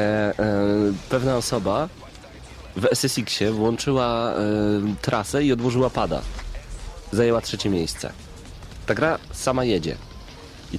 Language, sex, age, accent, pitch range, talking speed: Polish, male, 30-49, native, 100-125 Hz, 95 wpm